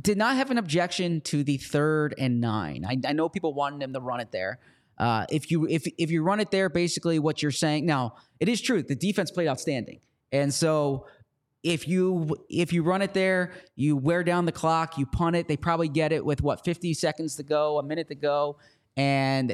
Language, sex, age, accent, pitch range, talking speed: English, male, 30-49, American, 140-170 Hz, 225 wpm